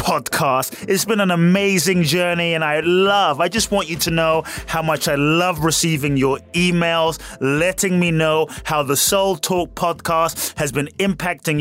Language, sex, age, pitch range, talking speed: English, male, 30-49, 130-165 Hz, 170 wpm